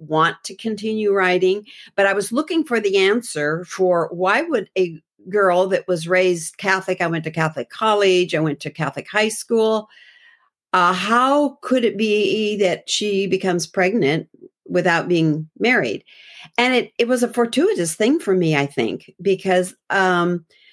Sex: female